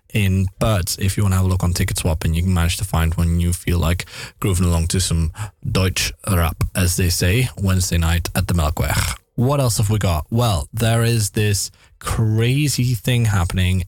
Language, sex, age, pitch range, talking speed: Dutch, male, 20-39, 90-105 Hz, 210 wpm